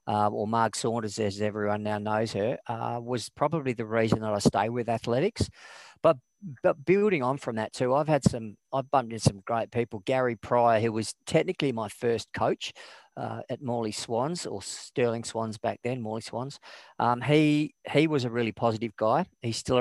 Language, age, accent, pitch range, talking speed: English, 40-59, Australian, 110-130 Hz, 195 wpm